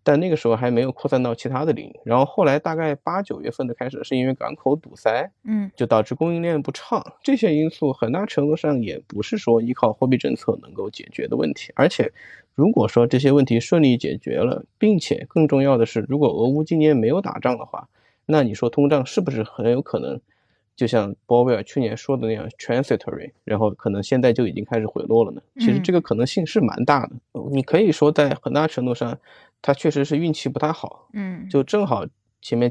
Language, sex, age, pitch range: Chinese, male, 20-39, 120-155 Hz